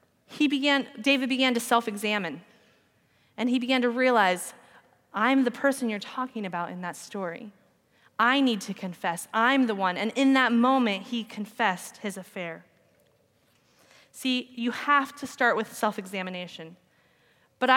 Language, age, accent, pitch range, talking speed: English, 20-39, American, 210-260 Hz, 145 wpm